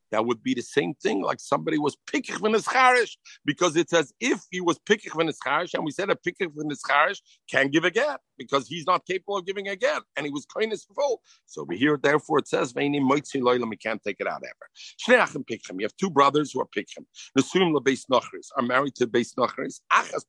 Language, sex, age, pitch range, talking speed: English, male, 50-69, 130-210 Hz, 205 wpm